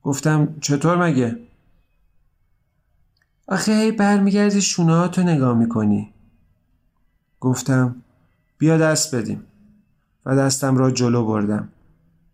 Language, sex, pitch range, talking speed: Persian, male, 115-155 Hz, 90 wpm